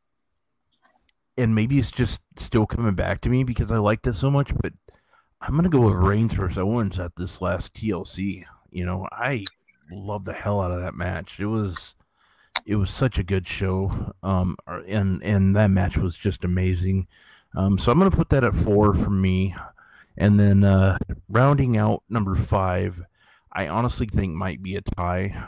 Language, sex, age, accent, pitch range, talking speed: English, male, 30-49, American, 95-110 Hz, 180 wpm